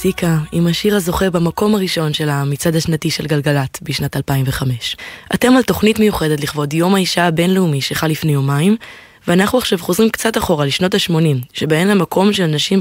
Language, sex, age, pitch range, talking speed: Hebrew, female, 20-39, 150-195 Hz, 165 wpm